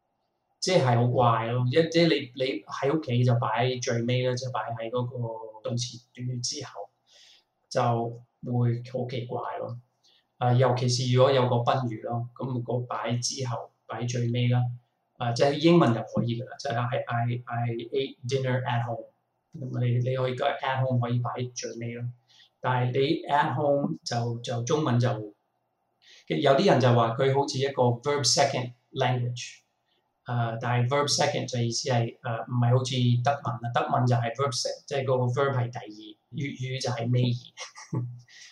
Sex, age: male, 20-39